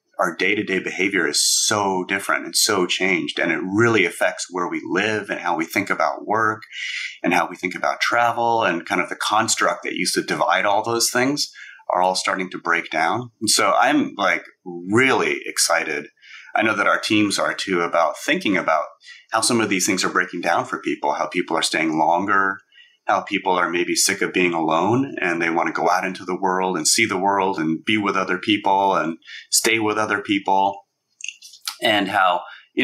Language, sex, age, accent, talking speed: English, male, 30-49, American, 205 wpm